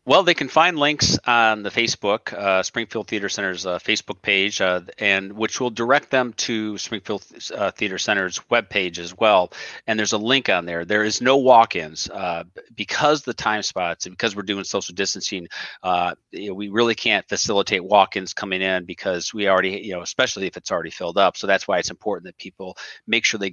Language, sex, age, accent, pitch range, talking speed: English, male, 40-59, American, 95-110 Hz, 205 wpm